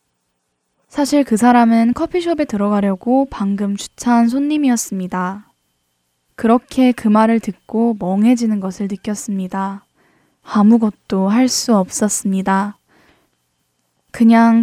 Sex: female